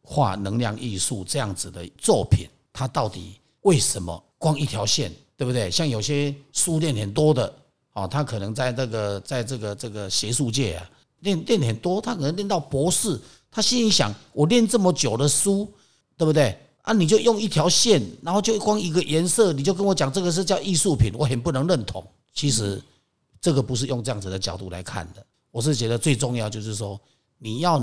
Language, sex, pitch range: Chinese, male, 105-160 Hz